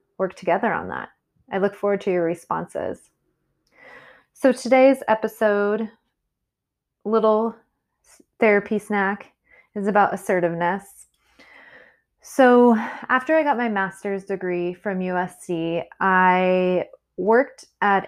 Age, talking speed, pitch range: 20-39, 105 wpm, 180-210 Hz